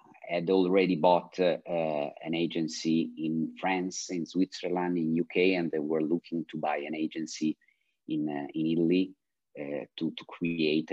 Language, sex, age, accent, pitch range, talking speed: Italian, male, 40-59, native, 80-95 Hz, 160 wpm